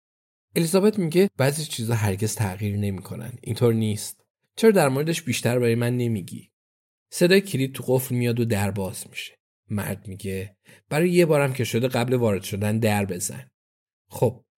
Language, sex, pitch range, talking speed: Persian, male, 105-140 Hz, 155 wpm